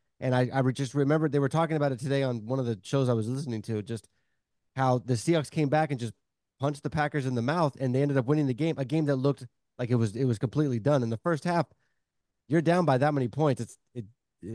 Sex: male